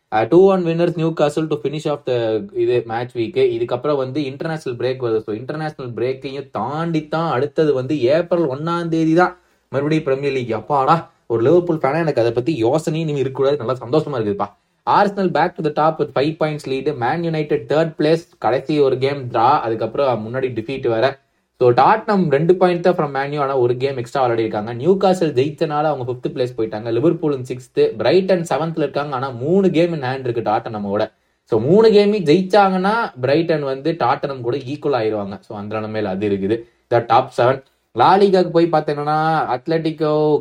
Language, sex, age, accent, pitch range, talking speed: Tamil, male, 20-39, native, 120-160 Hz, 155 wpm